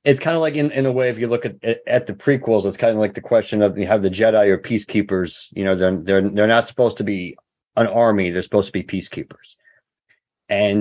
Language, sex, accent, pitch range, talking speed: English, male, American, 100-120 Hz, 250 wpm